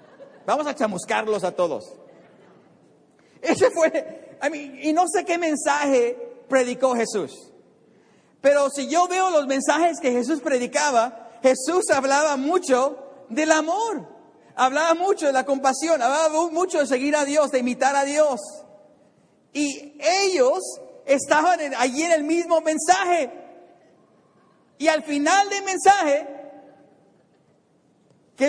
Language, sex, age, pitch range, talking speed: English, male, 50-69, 240-305 Hz, 125 wpm